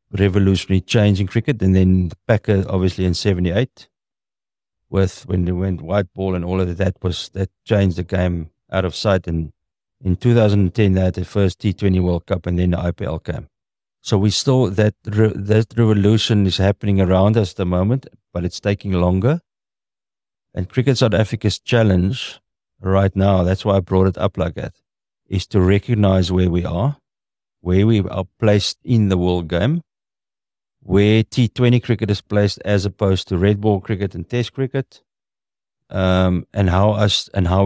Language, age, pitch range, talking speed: English, 50-69, 90-110 Hz, 170 wpm